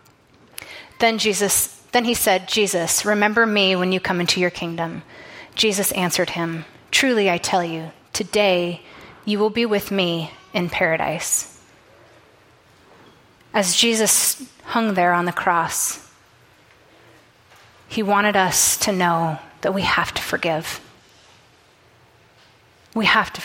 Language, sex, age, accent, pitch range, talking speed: English, female, 30-49, American, 185-245 Hz, 125 wpm